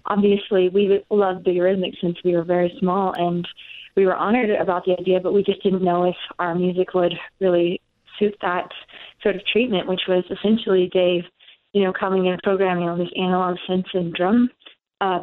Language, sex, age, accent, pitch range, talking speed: English, female, 20-39, American, 180-210 Hz, 190 wpm